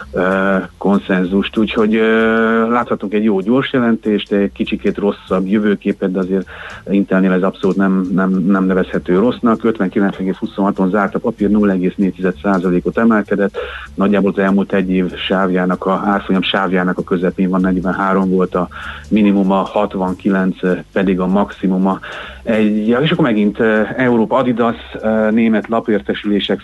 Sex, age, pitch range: male, 40-59, 95-105 Hz